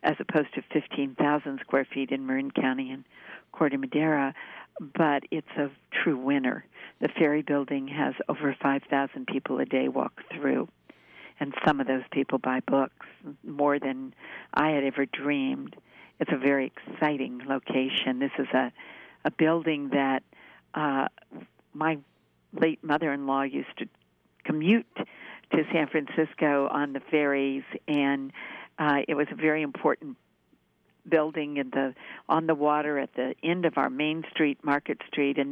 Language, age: English, 50-69